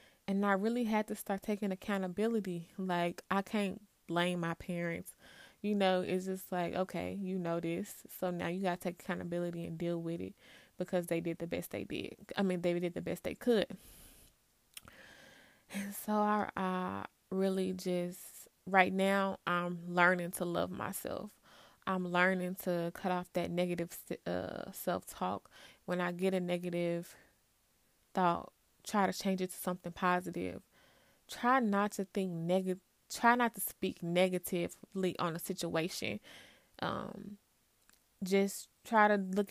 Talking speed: 155 wpm